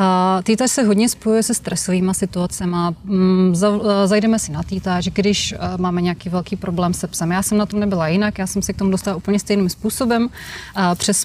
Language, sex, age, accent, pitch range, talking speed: Czech, female, 30-49, native, 190-210 Hz, 180 wpm